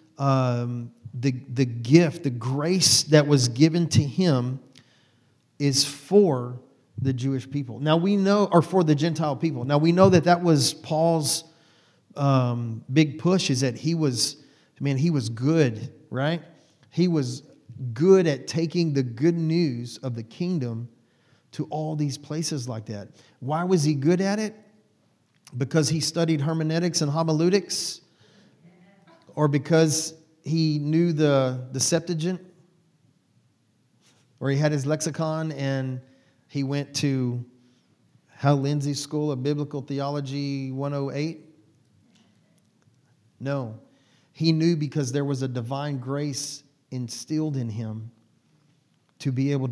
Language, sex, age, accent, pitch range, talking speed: English, male, 40-59, American, 130-160 Hz, 135 wpm